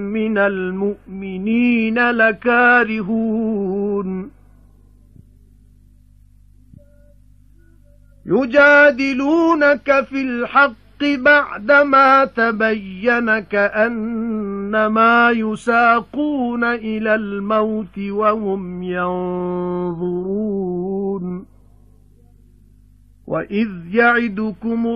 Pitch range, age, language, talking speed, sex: 195-240 Hz, 50-69, English, 40 wpm, male